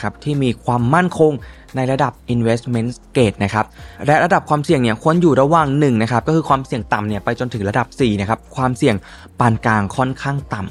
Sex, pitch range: male, 120-155 Hz